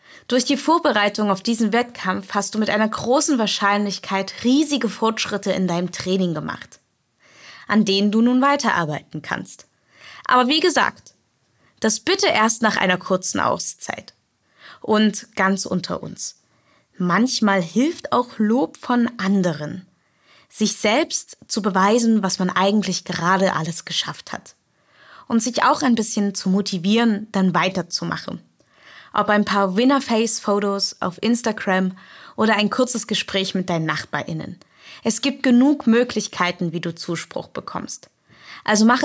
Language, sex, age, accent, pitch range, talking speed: German, female, 20-39, German, 185-235 Hz, 135 wpm